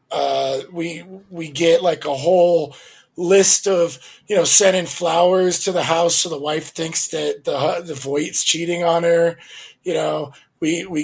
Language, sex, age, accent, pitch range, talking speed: English, male, 20-39, American, 155-195 Hz, 175 wpm